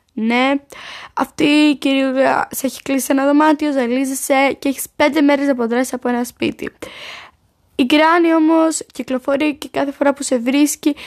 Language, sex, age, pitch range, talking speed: Greek, female, 10-29, 250-305 Hz, 155 wpm